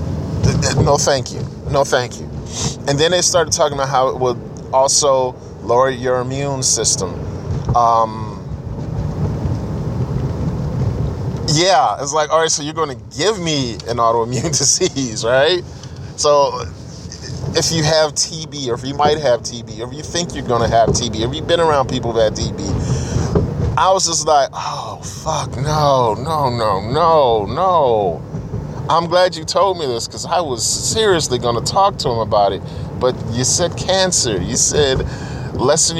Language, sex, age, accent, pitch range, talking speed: English, male, 20-39, American, 115-155 Hz, 165 wpm